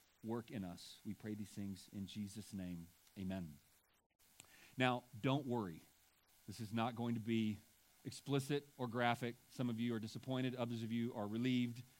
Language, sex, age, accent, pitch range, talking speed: English, male, 40-59, American, 110-140 Hz, 165 wpm